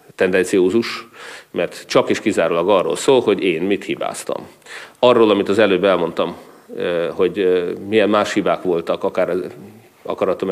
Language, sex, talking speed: Hungarian, male, 125 wpm